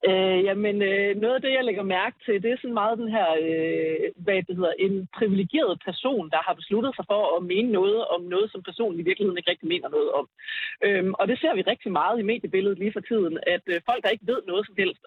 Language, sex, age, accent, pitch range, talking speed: Danish, female, 40-59, native, 190-250 Hz, 255 wpm